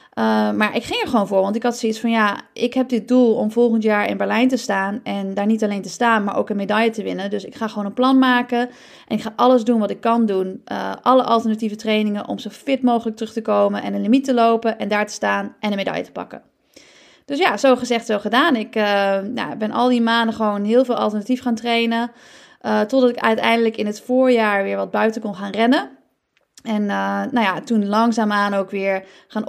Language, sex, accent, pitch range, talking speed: Dutch, female, Dutch, 210-245 Hz, 240 wpm